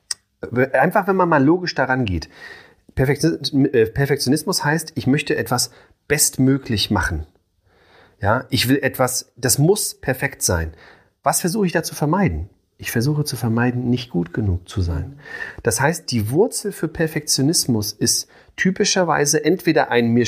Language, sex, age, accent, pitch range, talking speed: German, male, 30-49, German, 115-145 Hz, 140 wpm